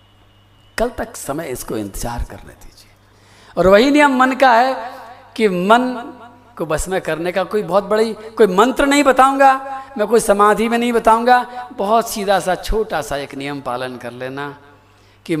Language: Hindi